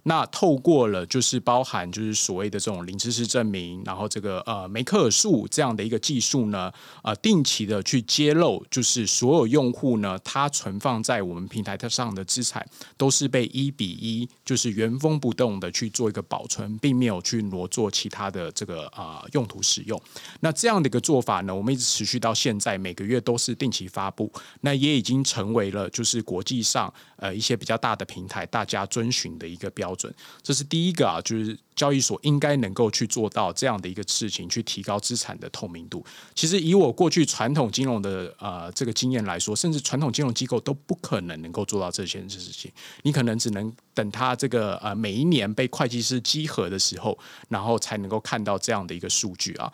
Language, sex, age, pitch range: Chinese, male, 20-39, 105-130 Hz